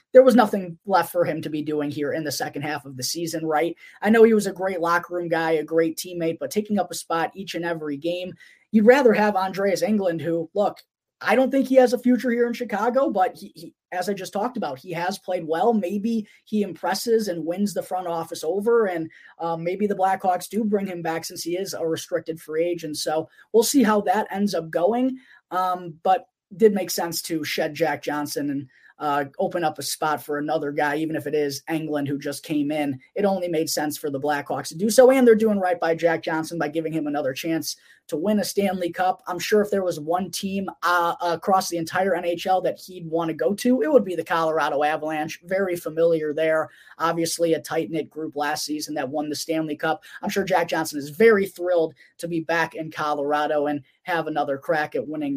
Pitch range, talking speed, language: 155-195 Hz, 225 wpm, English